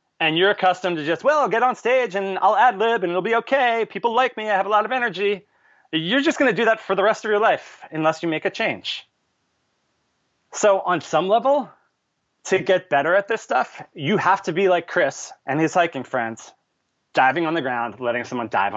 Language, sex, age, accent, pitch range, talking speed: English, male, 30-49, American, 135-195 Hz, 225 wpm